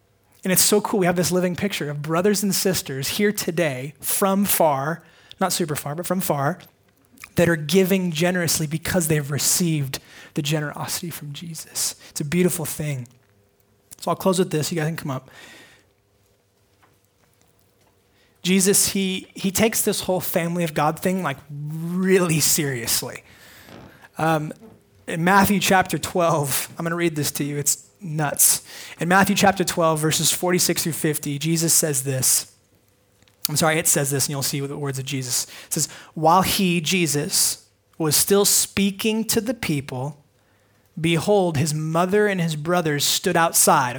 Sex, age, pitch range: male, 20-39, 140-180 Hz